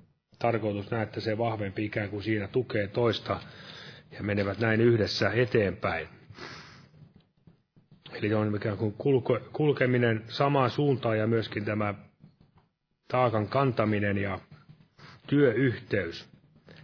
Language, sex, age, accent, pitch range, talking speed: Finnish, male, 30-49, native, 110-135 Hz, 105 wpm